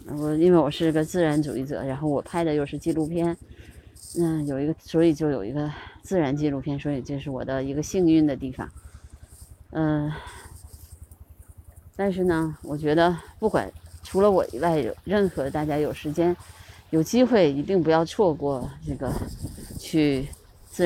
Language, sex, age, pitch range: Chinese, female, 20-39, 135-170 Hz